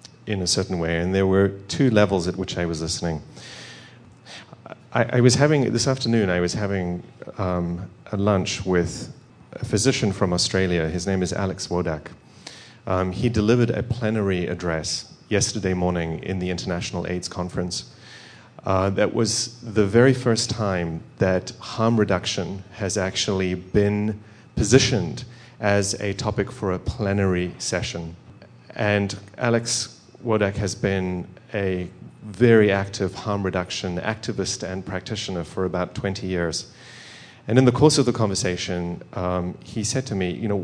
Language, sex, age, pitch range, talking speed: English, male, 30-49, 95-120 Hz, 150 wpm